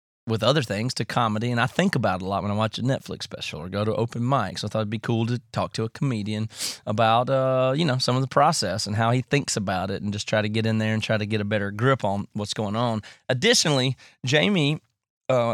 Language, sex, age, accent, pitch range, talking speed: English, male, 30-49, American, 105-125 Hz, 265 wpm